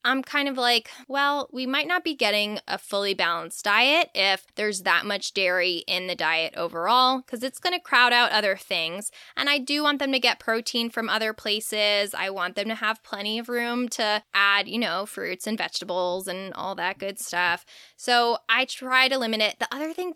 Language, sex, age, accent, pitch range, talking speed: English, female, 10-29, American, 195-260 Hz, 210 wpm